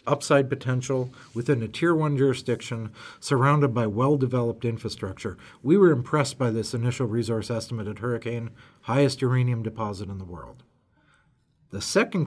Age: 40-59